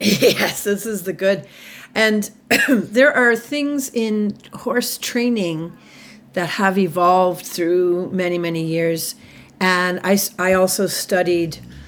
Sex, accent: female, American